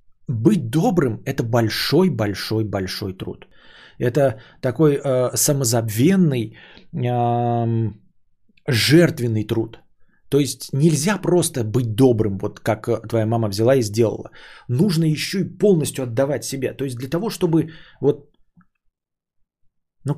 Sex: male